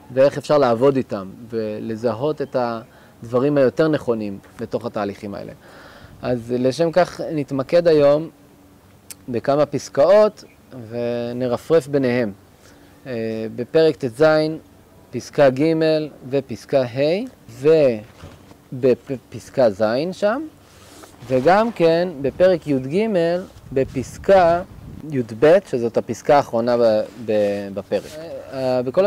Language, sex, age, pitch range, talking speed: Hebrew, male, 30-49, 120-175 Hz, 90 wpm